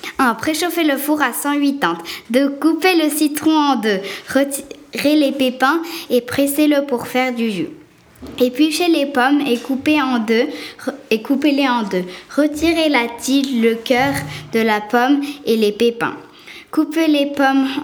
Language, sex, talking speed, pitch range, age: French, female, 160 wpm, 235-285 Hz, 20-39